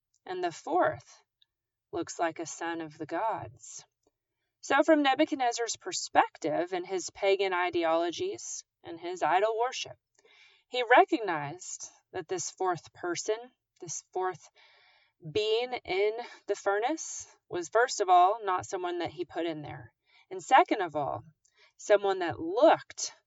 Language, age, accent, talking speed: English, 30-49, American, 135 wpm